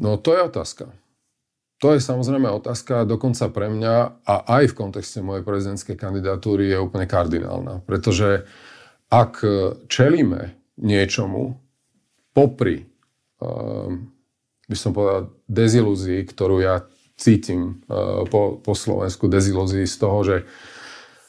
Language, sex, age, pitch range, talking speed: Slovak, male, 40-59, 95-115 Hz, 120 wpm